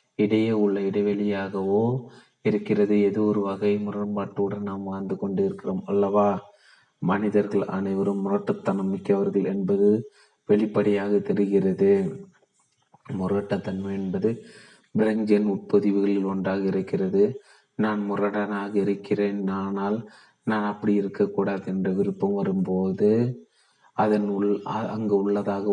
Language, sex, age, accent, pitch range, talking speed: Tamil, male, 30-49, native, 100-110 Hz, 95 wpm